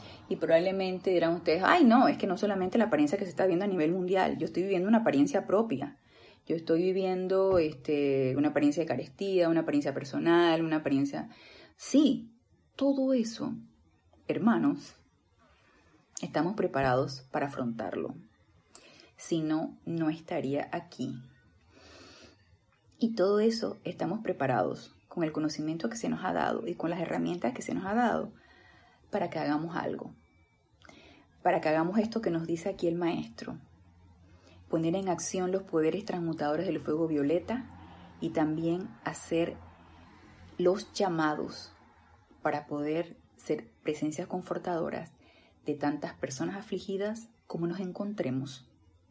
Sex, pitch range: female, 140-190 Hz